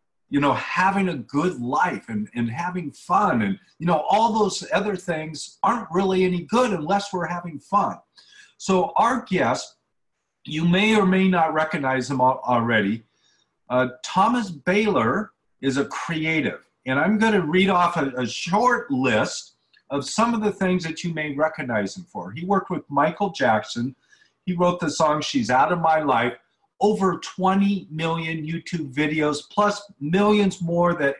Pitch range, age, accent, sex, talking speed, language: 140-195 Hz, 50-69, American, male, 165 wpm, English